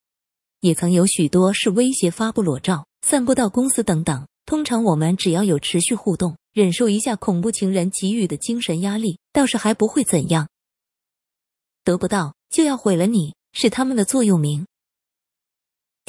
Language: Japanese